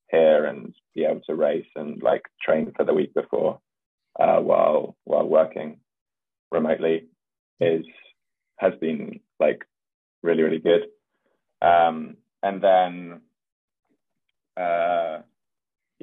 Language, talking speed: English, 110 wpm